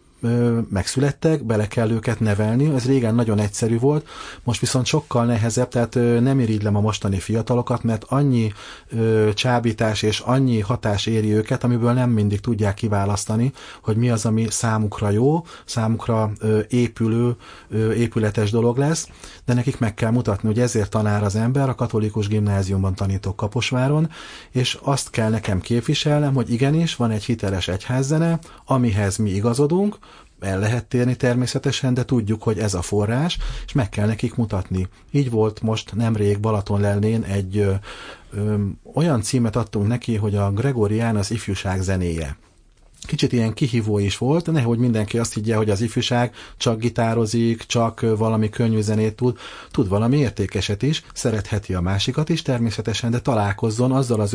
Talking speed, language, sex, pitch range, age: 150 wpm, Hungarian, male, 105-125 Hz, 30-49